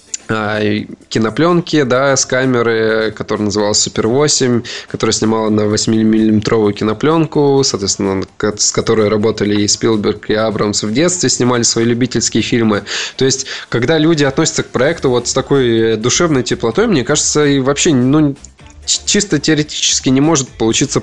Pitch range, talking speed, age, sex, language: 110-145 Hz, 135 wpm, 20-39, male, Russian